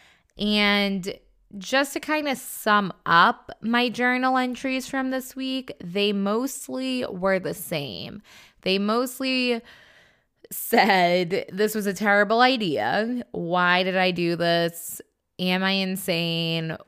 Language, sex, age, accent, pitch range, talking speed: English, female, 20-39, American, 175-230 Hz, 120 wpm